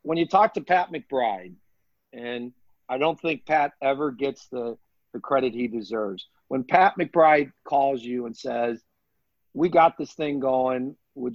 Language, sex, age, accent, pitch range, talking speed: English, male, 50-69, American, 120-155 Hz, 165 wpm